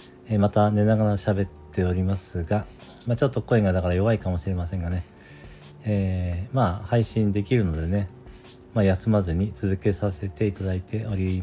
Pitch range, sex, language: 95-120 Hz, male, Japanese